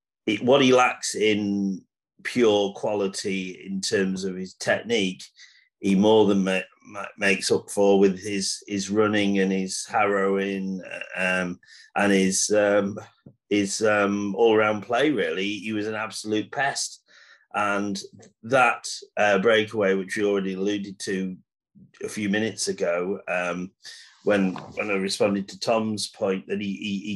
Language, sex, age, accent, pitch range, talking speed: English, male, 30-49, British, 95-110 Hz, 150 wpm